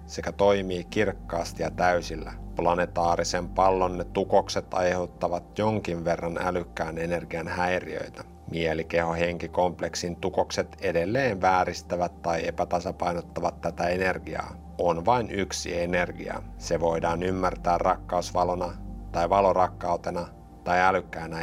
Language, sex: Finnish, male